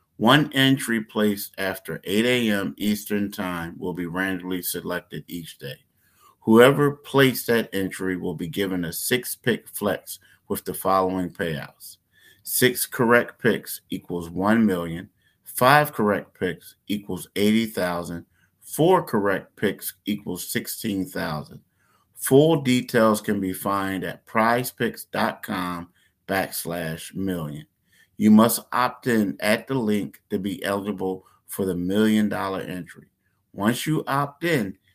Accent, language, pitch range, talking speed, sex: American, English, 90-115 Hz, 125 wpm, male